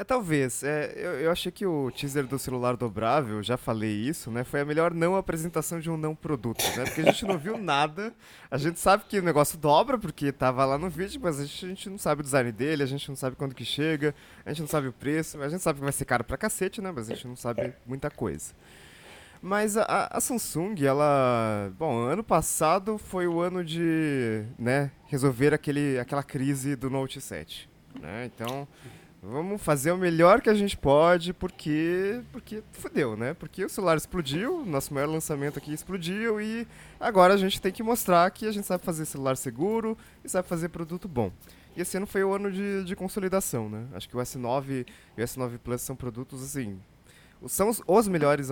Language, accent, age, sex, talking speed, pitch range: English, Brazilian, 20-39, male, 210 wpm, 130-185 Hz